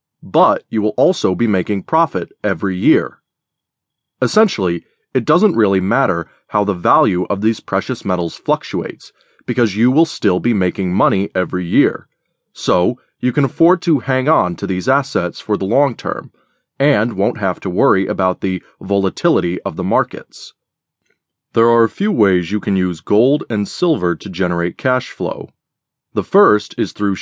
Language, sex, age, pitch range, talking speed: English, male, 30-49, 95-130 Hz, 165 wpm